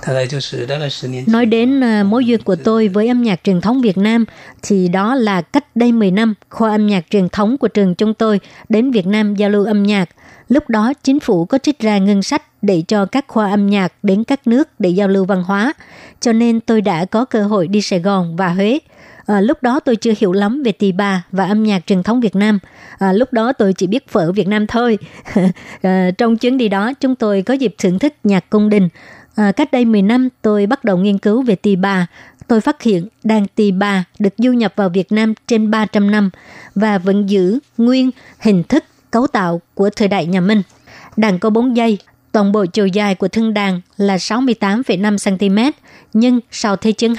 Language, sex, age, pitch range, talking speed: Vietnamese, male, 60-79, 195-230 Hz, 215 wpm